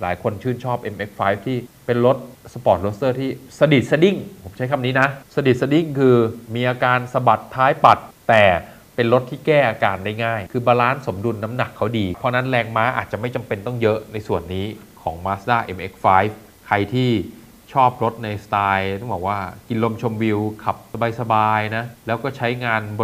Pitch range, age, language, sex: 100-120 Hz, 20-39, Thai, male